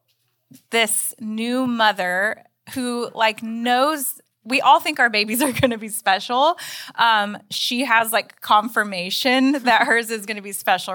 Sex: female